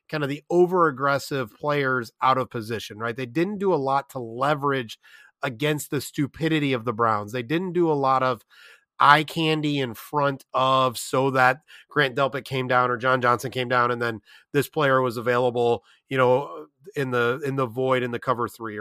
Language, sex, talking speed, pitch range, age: English, male, 195 wpm, 125-160 Hz, 30-49